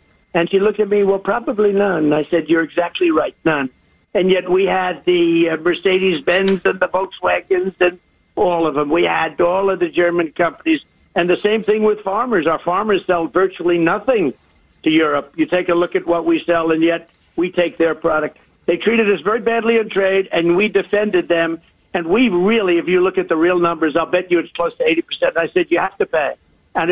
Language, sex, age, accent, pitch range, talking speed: English, male, 60-79, American, 170-210 Hz, 215 wpm